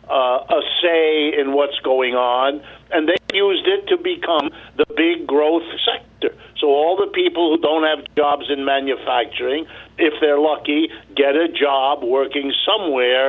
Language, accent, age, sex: English, American, 60-79, male